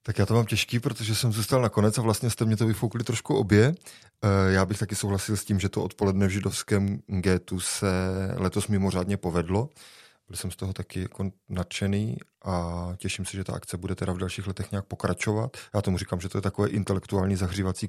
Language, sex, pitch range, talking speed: Czech, male, 95-110 Hz, 210 wpm